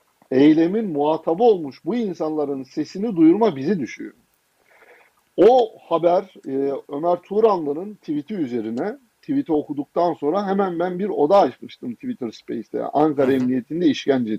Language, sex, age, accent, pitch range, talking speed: Turkish, male, 50-69, native, 155-220 Hz, 115 wpm